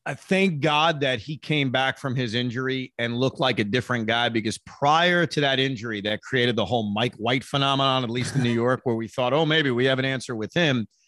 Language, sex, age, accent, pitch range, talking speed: English, male, 30-49, American, 130-160 Hz, 240 wpm